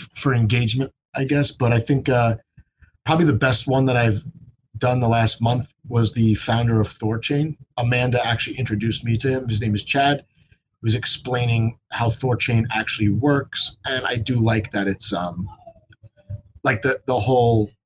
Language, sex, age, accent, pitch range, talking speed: English, male, 30-49, American, 105-130 Hz, 170 wpm